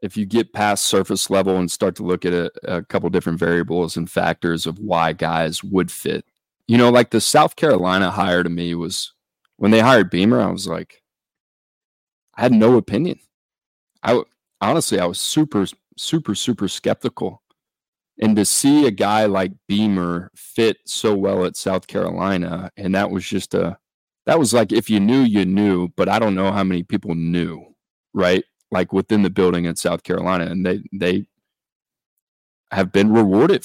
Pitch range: 90-105 Hz